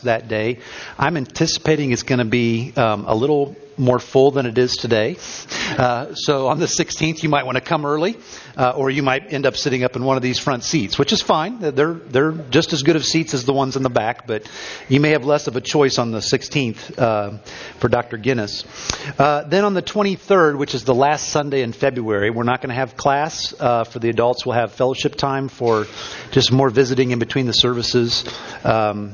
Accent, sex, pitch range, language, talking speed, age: American, male, 115-140 Hz, English, 220 wpm, 50-69